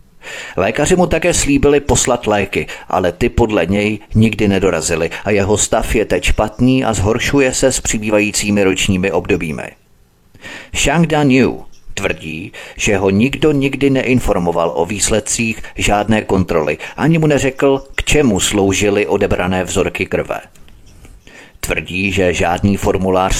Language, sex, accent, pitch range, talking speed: Czech, male, native, 95-130 Hz, 130 wpm